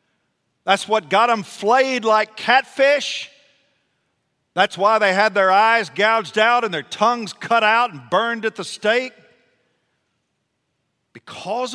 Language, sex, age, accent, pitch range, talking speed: English, male, 50-69, American, 120-200 Hz, 135 wpm